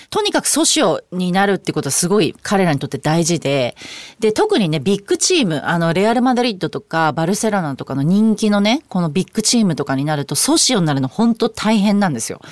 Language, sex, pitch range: Japanese, female, 155-240 Hz